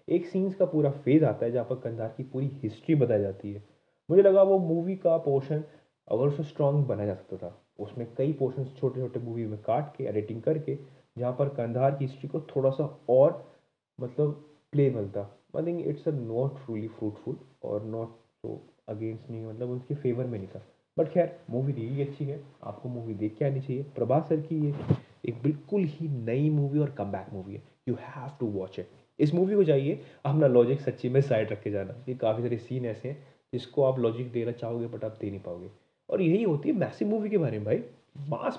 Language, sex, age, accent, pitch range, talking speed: Hindi, male, 20-39, native, 115-150 Hz, 210 wpm